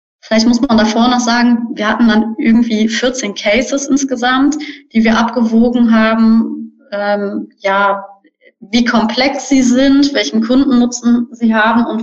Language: German